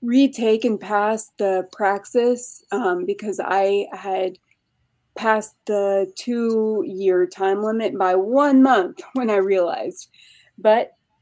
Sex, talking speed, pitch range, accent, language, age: female, 110 wpm, 190-245 Hz, American, English, 20-39